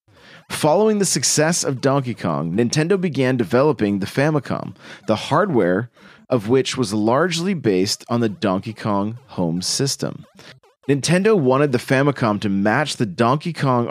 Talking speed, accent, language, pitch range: 140 wpm, American, English, 110-150 Hz